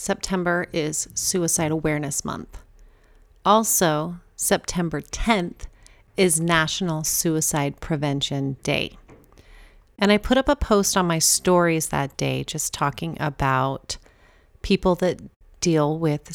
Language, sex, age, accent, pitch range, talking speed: English, female, 40-59, American, 150-180 Hz, 115 wpm